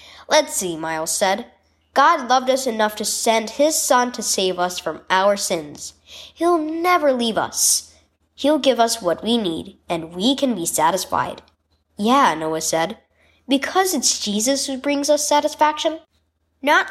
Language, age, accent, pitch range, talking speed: English, 10-29, American, 195-305 Hz, 155 wpm